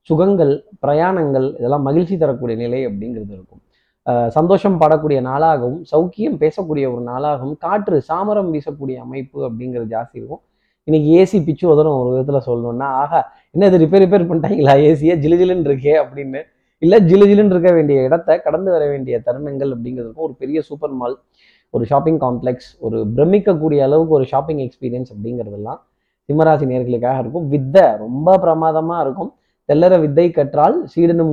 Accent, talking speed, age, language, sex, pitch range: native, 145 wpm, 20-39, Tamil, male, 135-170 Hz